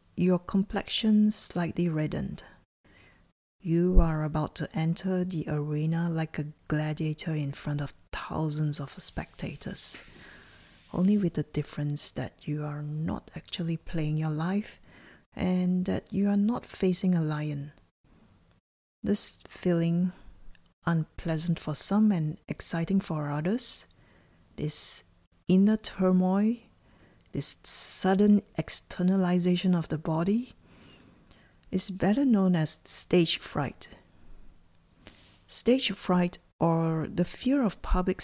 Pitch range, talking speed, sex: 150-185 Hz, 110 wpm, female